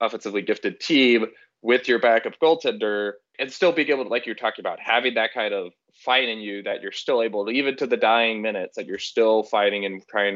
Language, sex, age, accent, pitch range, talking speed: English, male, 20-39, American, 105-165 Hz, 225 wpm